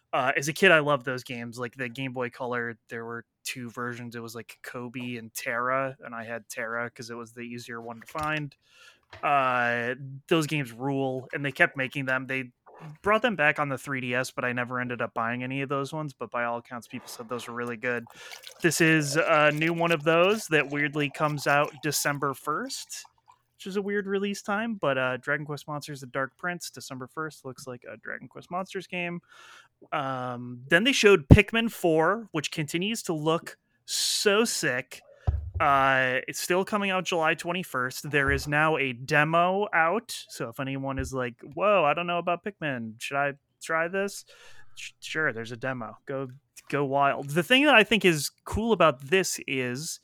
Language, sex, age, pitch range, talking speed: English, male, 20-39, 125-170 Hz, 200 wpm